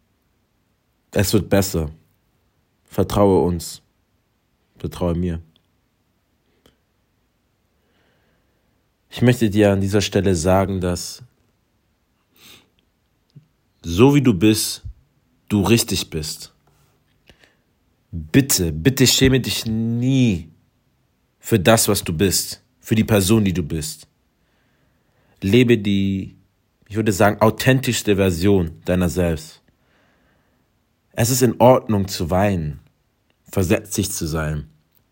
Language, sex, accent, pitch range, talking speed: German, male, German, 90-115 Hz, 95 wpm